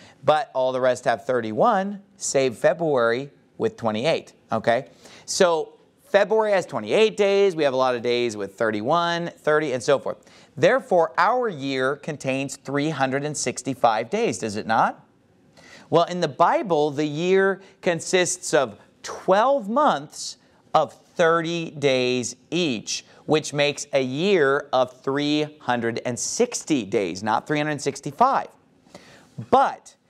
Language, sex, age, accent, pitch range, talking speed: English, male, 40-59, American, 140-195 Hz, 120 wpm